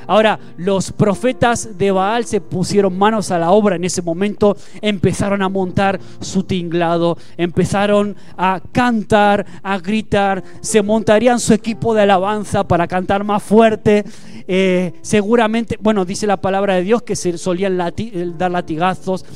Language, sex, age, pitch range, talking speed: Spanish, male, 20-39, 180-220 Hz, 145 wpm